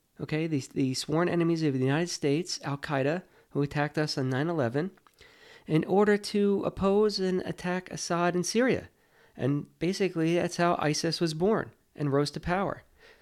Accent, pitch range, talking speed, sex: American, 130-170 Hz, 160 wpm, male